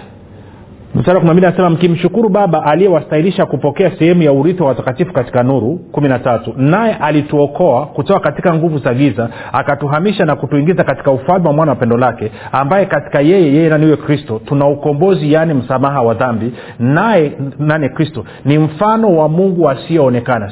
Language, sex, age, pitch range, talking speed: Swahili, male, 40-59, 135-180 Hz, 145 wpm